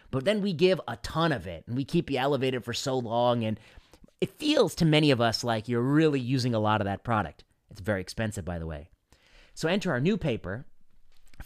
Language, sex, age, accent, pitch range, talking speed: English, male, 30-49, American, 105-140 Hz, 230 wpm